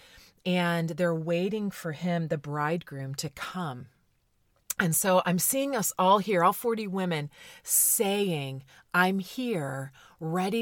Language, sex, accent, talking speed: English, female, American, 130 wpm